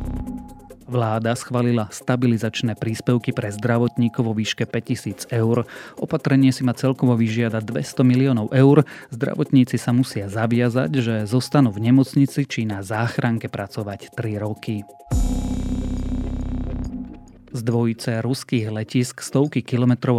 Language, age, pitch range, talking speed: Slovak, 30-49, 110-130 Hz, 115 wpm